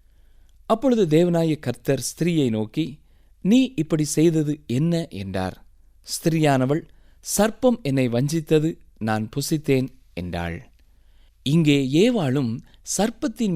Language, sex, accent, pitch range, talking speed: Tamil, male, native, 115-185 Hz, 90 wpm